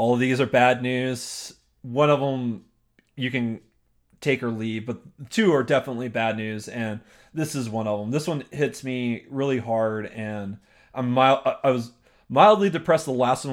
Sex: male